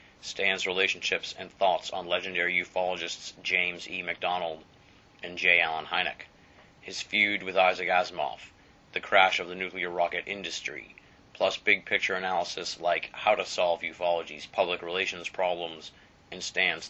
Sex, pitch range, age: male, 85-95 Hz, 30-49